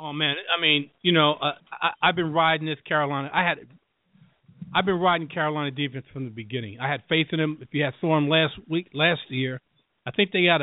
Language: English